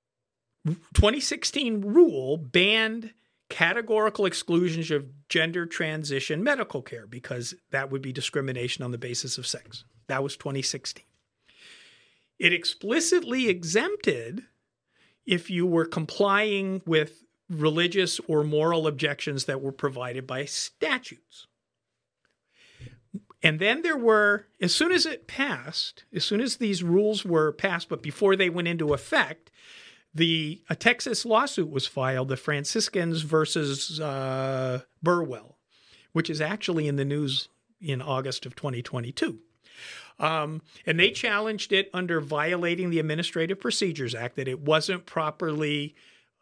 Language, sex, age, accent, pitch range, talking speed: English, male, 50-69, American, 140-195 Hz, 125 wpm